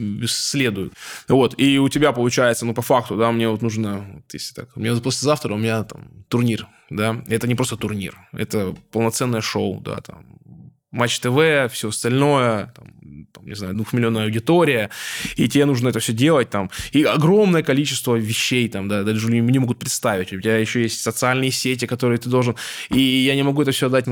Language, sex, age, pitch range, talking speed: Russian, male, 20-39, 110-140 Hz, 190 wpm